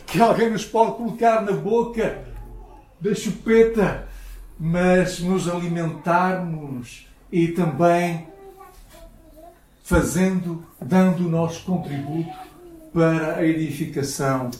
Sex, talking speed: male, 90 wpm